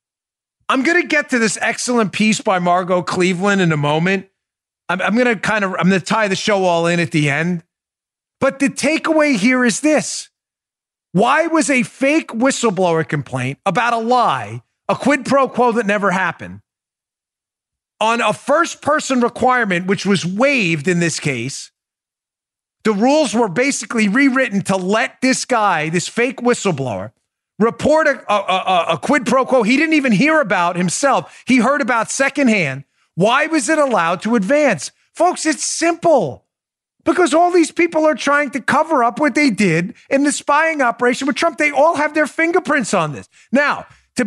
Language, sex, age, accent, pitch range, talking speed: English, male, 40-59, American, 185-290 Hz, 175 wpm